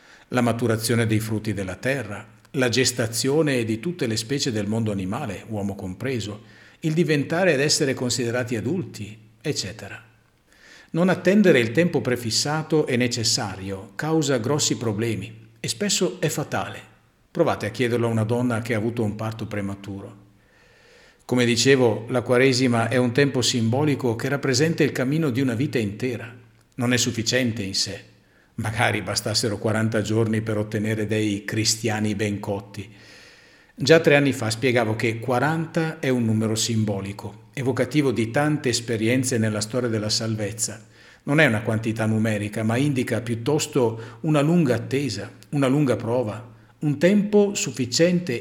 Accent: native